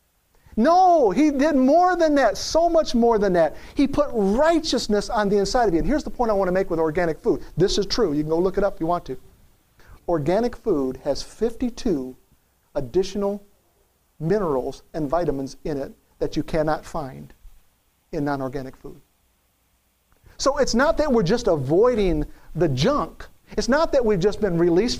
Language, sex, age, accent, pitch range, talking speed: English, male, 50-69, American, 185-290 Hz, 180 wpm